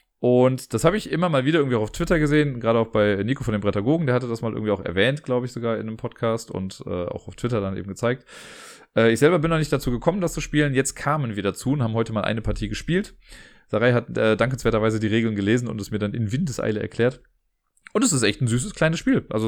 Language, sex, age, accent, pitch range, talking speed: German, male, 30-49, German, 105-135 Hz, 260 wpm